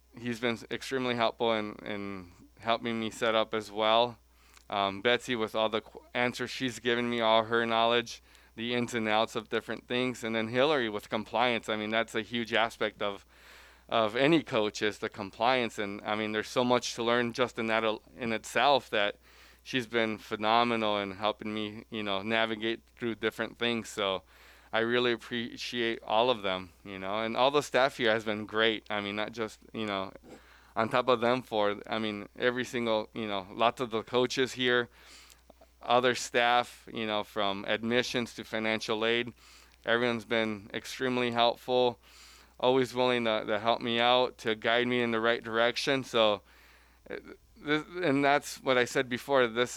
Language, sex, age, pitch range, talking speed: English, male, 20-39, 105-120 Hz, 180 wpm